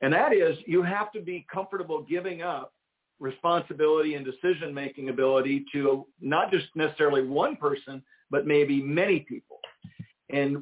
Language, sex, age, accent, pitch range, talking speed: English, male, 50-69, American, 140-180 Hz, 140 wpm